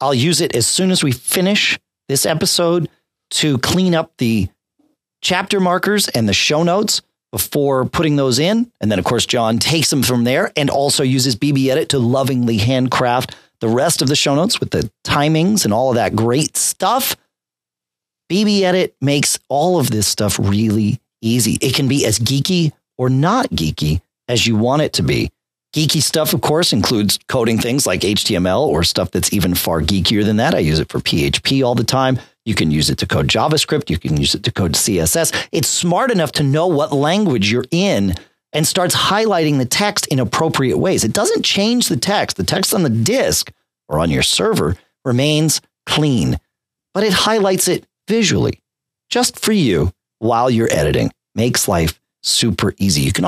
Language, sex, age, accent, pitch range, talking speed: English, male, 40-59, American, 110-165 Hz, 190 wpm